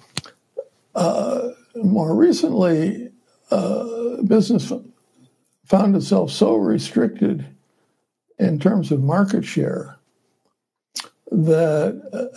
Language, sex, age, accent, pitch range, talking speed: English, male, 60-79, American, 150-205 Hz, 75 wpm